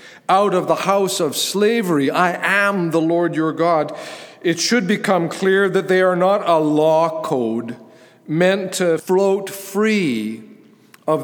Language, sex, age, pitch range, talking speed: English, male, 50-69, 160-205 Hz, 150 wpm